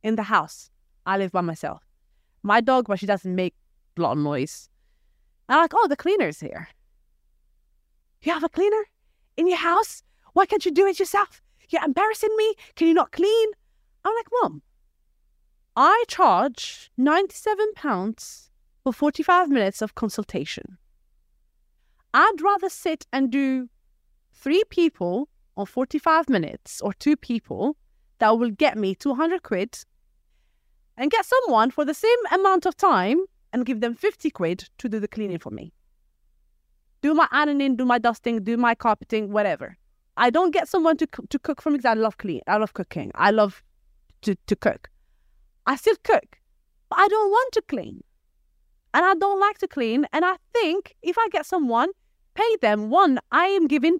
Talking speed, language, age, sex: 170 wpm, English, 30-49, female